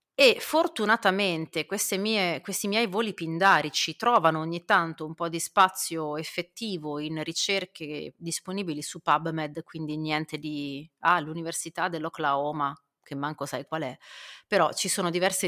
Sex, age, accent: female, 30-49, native